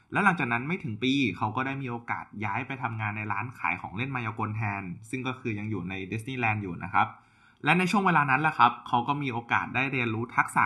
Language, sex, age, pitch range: Thai, male, 20-39, 110-140 Hz